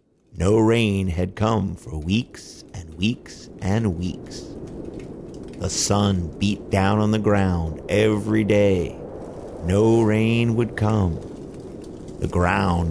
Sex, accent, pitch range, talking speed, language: male, American, 90-115 Hz, 115 wpm, English